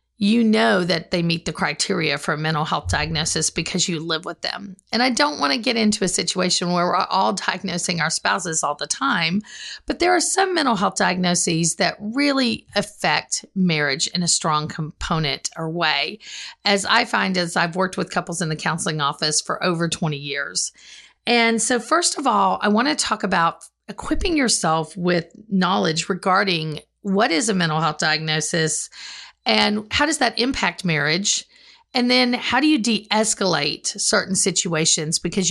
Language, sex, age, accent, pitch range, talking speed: English, female, 50-69, American, 165-225 Hz, 175 wpm